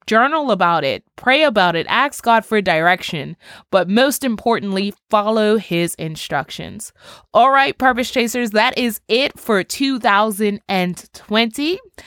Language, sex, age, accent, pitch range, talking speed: English, female, 20-39, American, 190-240 Hz, 125 wpm